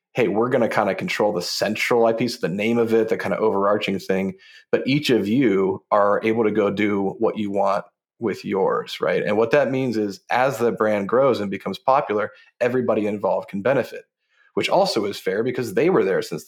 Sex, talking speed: male, 215 wpm